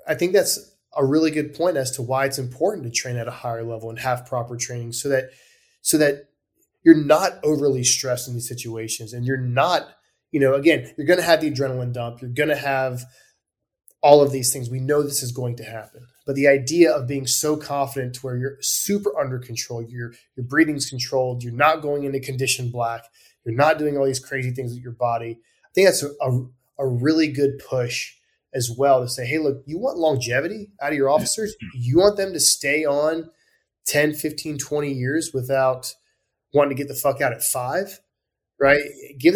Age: 20-39